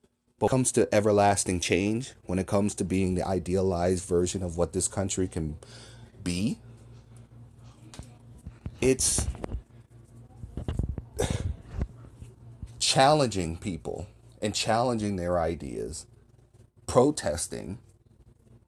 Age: 30-49